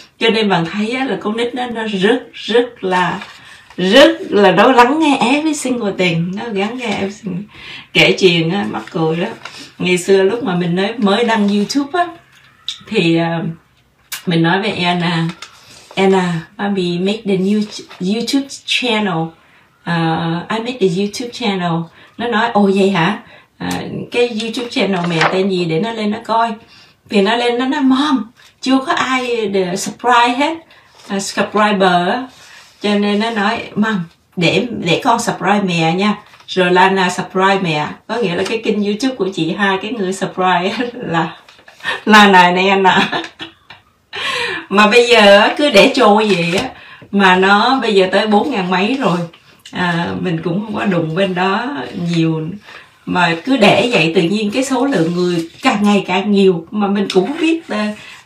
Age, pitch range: 20-39, 185-230 Hz